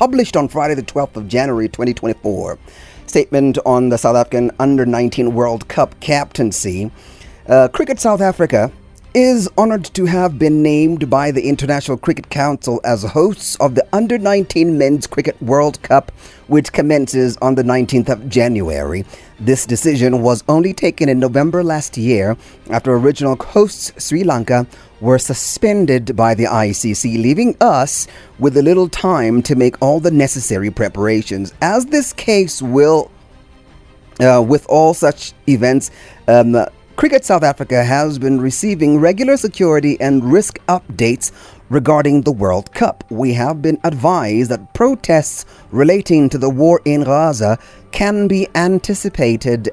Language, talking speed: English, 145 wpm